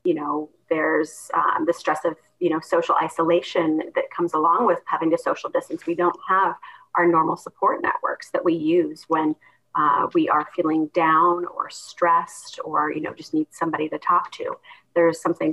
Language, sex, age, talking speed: English, female, 30-49, 185 wpm